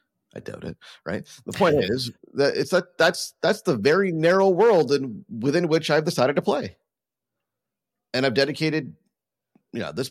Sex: male